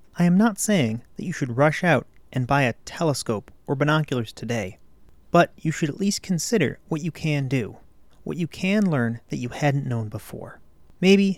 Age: 30-49